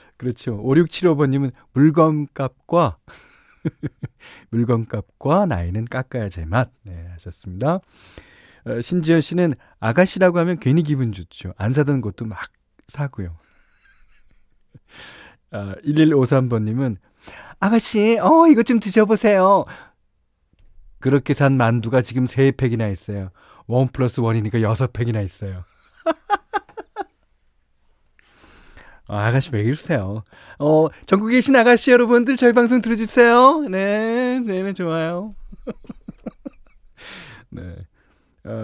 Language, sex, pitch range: Korean, male, 105-170 Hz